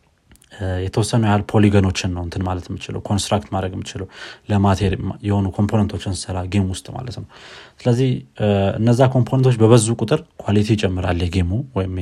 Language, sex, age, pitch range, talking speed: Amharic, male, 30-49, 95-105 Hz, 125 wpm